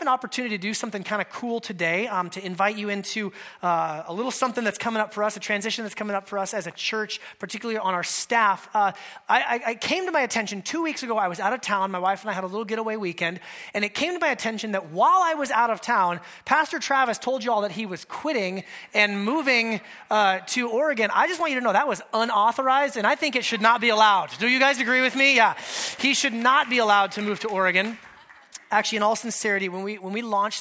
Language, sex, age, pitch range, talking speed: English, male, 30-49, 190-225 Hz, 255 wpm